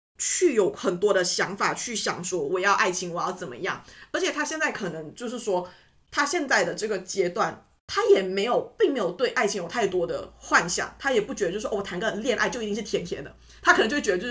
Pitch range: 190-275 Hz